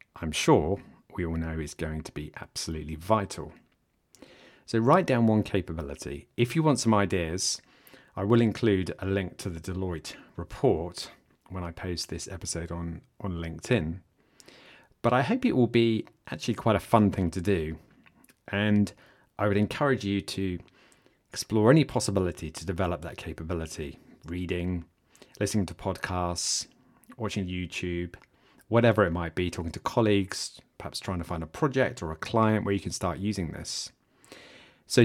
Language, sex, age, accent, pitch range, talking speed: English, male, 30-49, British, 85-110 Hz, 160 wpm